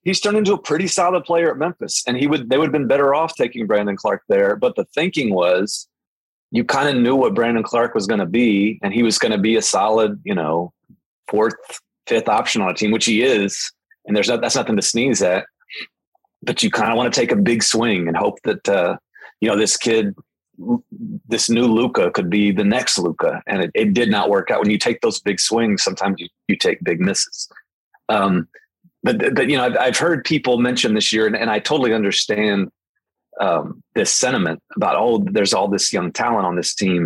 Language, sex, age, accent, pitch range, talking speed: English, male, 30-49, American, 100-160 Hz, 225 wpm